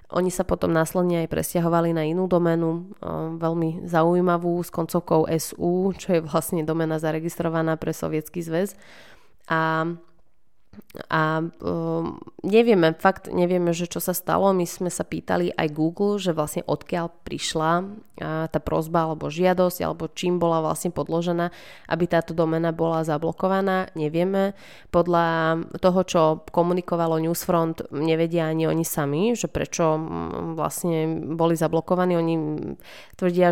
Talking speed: 135 wpm